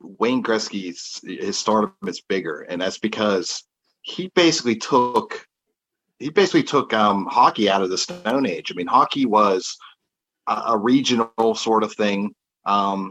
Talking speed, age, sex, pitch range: 150 wpm, 30-49, male, 105-115 Hz